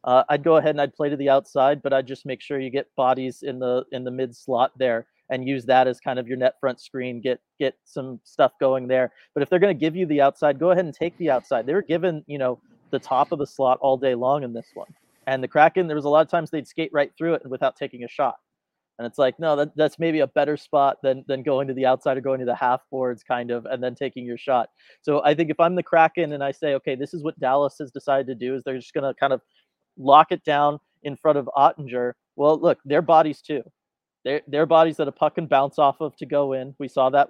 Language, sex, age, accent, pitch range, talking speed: English, male, 30-49, American, 130-150 Hz, 275 wpm